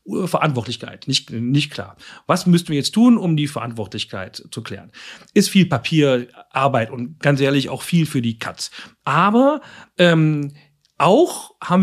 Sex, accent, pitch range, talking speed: male, German, 125-170 Hz, 145 wpm